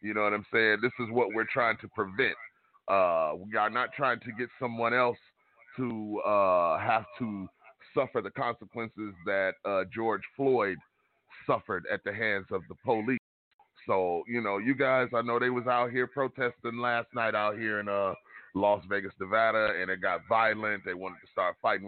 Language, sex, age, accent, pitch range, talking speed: English, male, 30-49, American, 115-170 Hz, 190 wpm